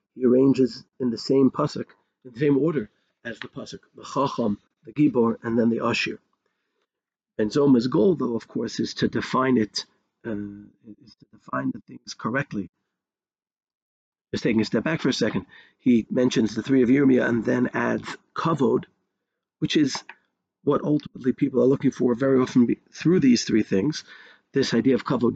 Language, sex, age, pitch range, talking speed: English, male, 50-69, 110-135 Hz, 175 wpm